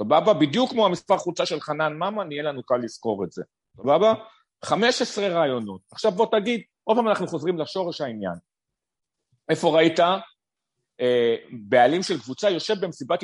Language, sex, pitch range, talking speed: Hebrew, male, 135-195 Hz, 155 wpm